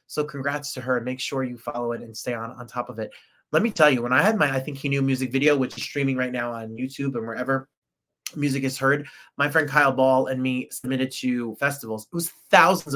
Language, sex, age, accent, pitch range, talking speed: English, male, 30-49, American, 125-150 Hz, 250 wpm